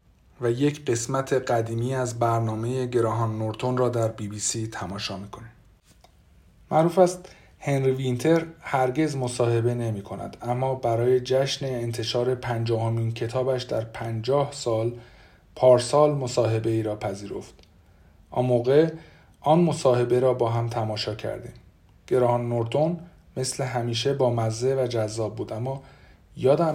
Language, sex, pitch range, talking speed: Persian, male, 110-130 Hz, 125 wpm